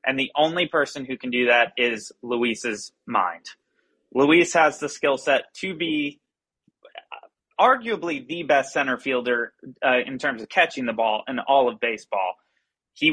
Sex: male